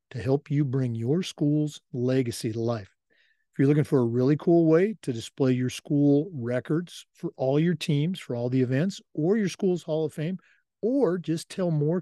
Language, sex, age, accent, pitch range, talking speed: English, male, 50-69, American, 125-170 Hz, 200 wpm